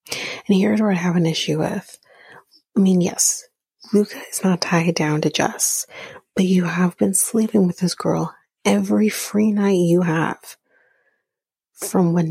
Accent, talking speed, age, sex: American, 160 wpm, 30-49, female